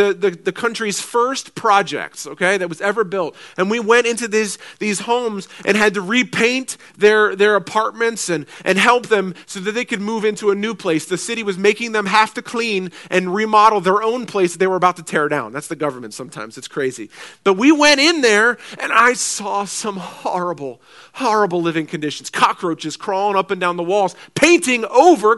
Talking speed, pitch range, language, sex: 200 wpm, 195-235 Hz, English, male